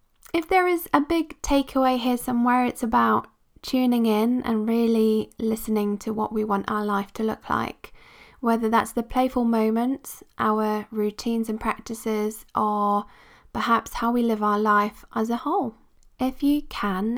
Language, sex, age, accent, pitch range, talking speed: English, female, 20-39, British, 215-250 Hz, 160 wpm